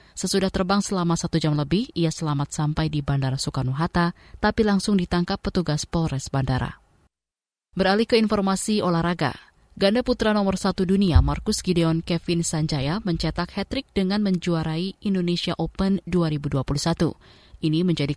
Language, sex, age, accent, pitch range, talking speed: Indonesian, female, 20-39, native, 145-190 Hz, 130 wpm